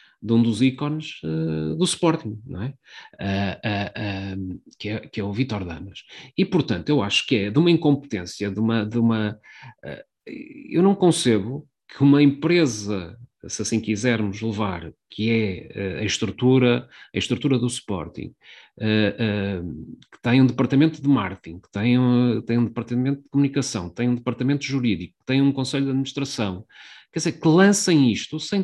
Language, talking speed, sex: Portuguese, 180 wpm, male